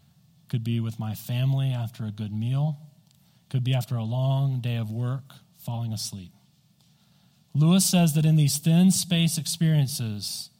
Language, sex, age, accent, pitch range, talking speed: English, male, 40-59, American, 130-165 Hz, 155 wpm